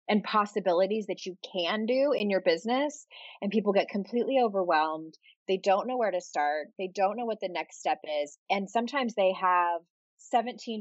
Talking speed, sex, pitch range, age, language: 185 wpm, female, 180-230 Hz, 20-39, English